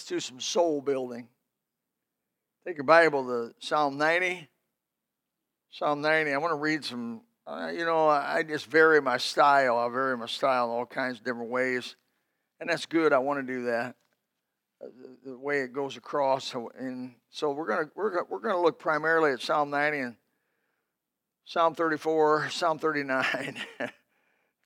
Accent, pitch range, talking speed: American, 130-170 Hz, 175 wpm